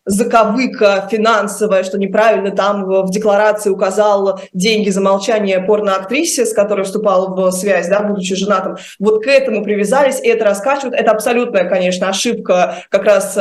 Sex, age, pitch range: female, 20-39, 195-230 Hz